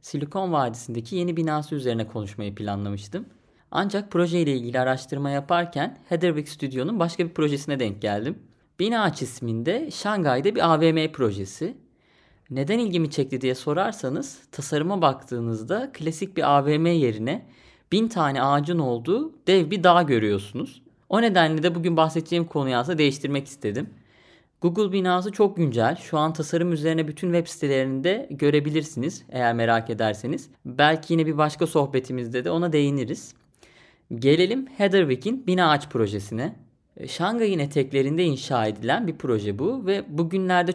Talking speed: 135 wpm